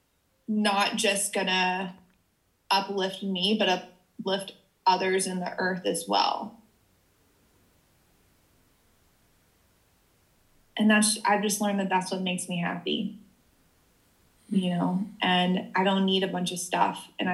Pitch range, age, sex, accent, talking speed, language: 180-210 Hz, 20-39, female, American, 120 wpm, English